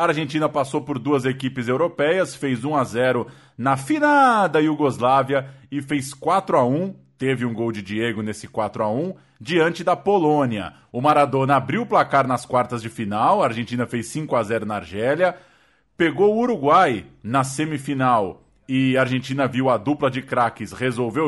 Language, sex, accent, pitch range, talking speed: Portuguese, male, Brazilian, 125-160 Hz, 155 wpm